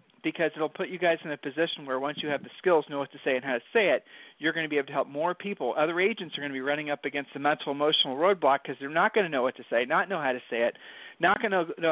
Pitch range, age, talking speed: 140-180 Hz, 40-59, 320 wpm